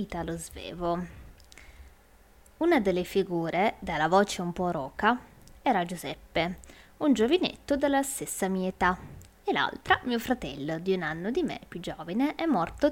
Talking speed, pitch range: 145 wpm, 175-275 Hz